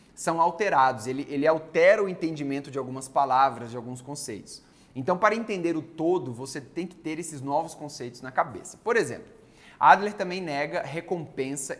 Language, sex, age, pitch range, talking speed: Portuguese, male, 20-39, 130-175 Hz, 170 wpm